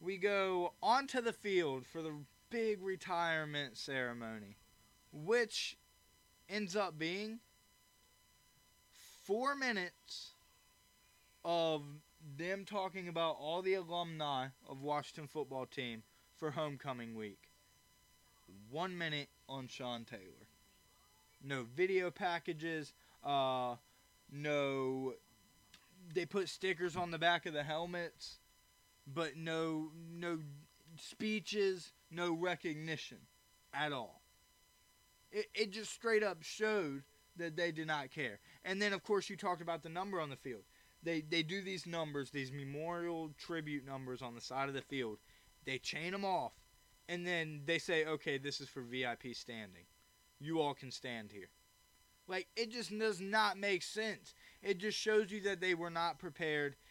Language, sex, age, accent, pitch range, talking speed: English, male, 20-39, American, 135-185 Hz, 135 wpm